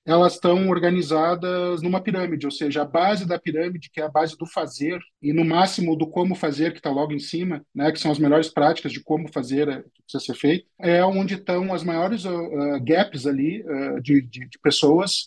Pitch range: 160-195 Hz